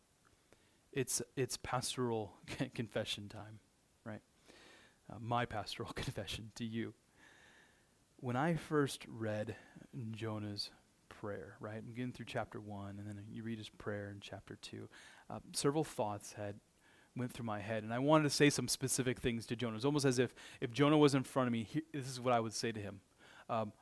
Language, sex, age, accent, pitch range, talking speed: English, male, 30-49, American, 105-145 Hz, 185 wpm